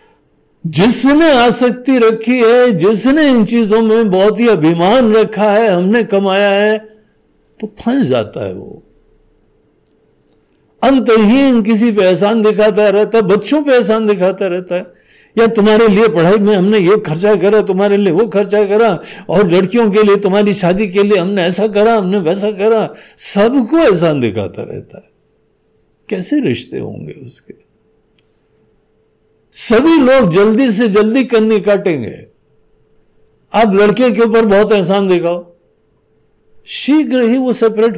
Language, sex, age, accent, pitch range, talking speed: Hindi, male, 60-79, native, 195-230 Hz, 140 wpm